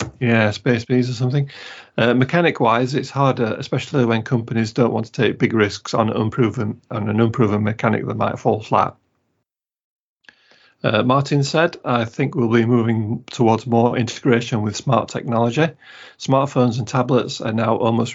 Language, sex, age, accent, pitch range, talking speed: English, male, 40-59, British, 110-125 Hz, 160 wpm